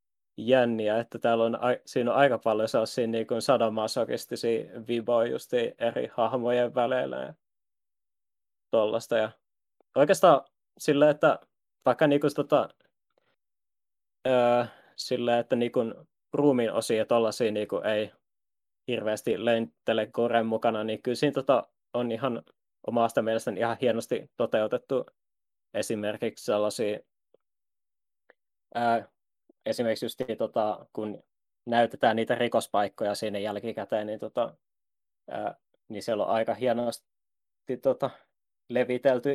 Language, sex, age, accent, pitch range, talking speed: Finnish, male, 20-39, native, 110-125 Hz, 105 wpm